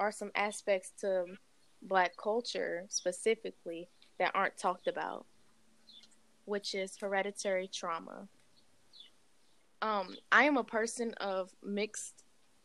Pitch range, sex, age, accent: 180-220 Hz, female, 10-29, American